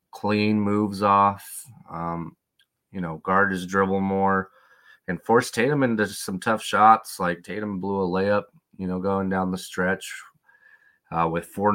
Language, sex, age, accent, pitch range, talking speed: English, male, 30-49, American, 90-100 Hz, 160 wpm